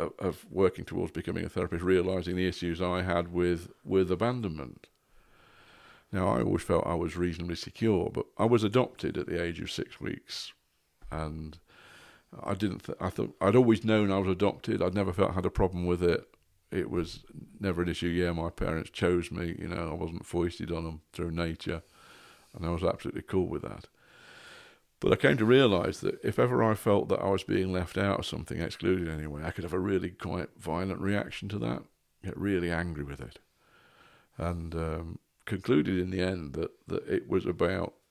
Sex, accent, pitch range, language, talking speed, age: male, British, 85-95 Hz, English, 195 wpm, 50-69